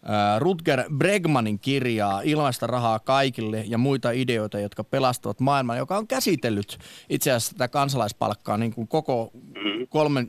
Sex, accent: male, native